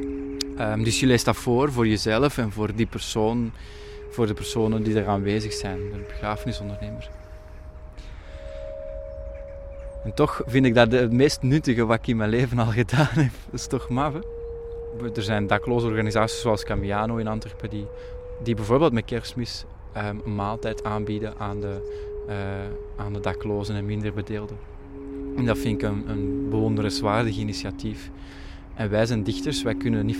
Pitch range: 100-120 Hz